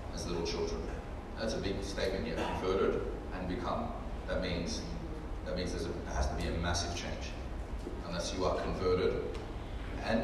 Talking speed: 165 wpm